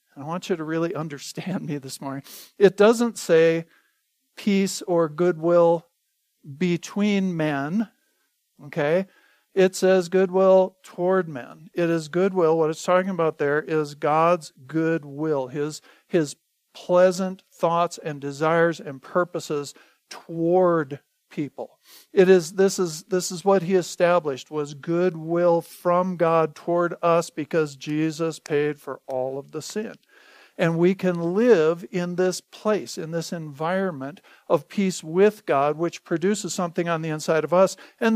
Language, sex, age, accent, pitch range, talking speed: English, male, 50-69, American, 160-190 Hz, 145 wpm